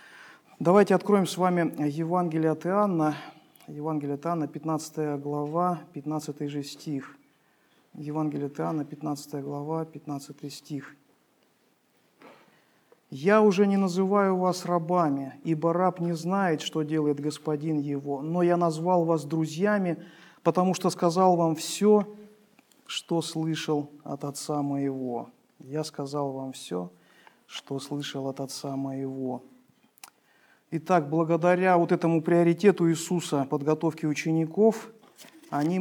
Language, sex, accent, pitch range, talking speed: Russian, male, native, 145-170 Hz, 110 wpm